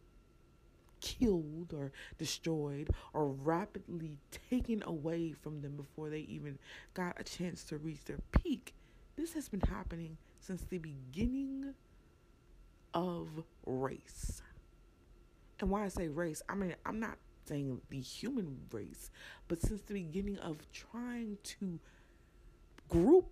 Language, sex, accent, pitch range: English, female, American, 140-195 Hz